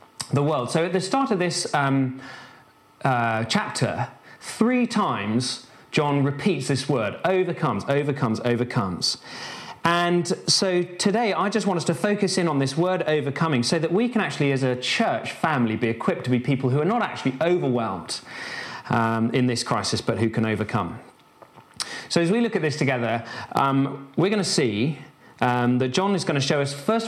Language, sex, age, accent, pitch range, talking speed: English, male, 40-59, British, 120-160 Hz, 180 wpm